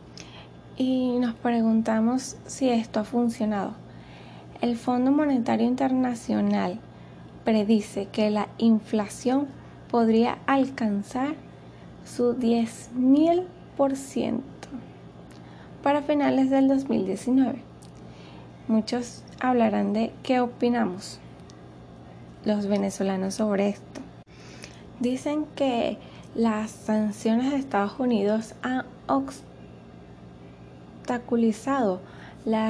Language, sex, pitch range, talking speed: Spanish, female, 195-260 Hz, 75 wpm